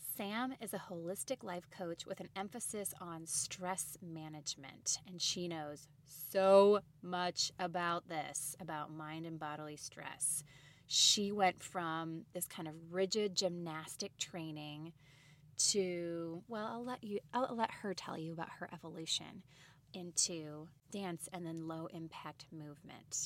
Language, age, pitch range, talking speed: English, 20-39, 150-200 Hz, 135 wpm